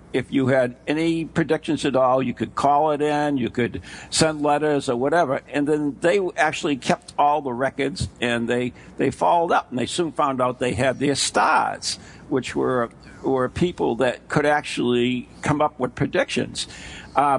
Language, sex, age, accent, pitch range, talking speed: English, male, 60-79, American, 120-150 Hz, 180 wpm